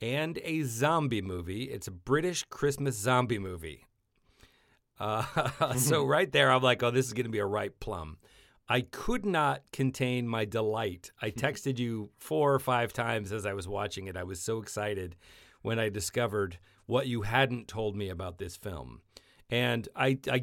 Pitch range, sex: 105-135 Hz, male